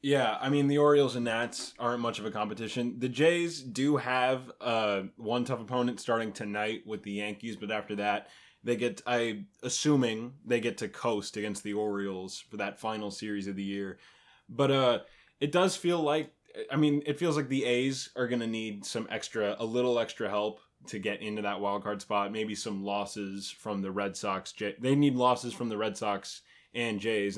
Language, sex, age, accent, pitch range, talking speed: English, male, 20-39, American, 105-125 Hz, 200 wpm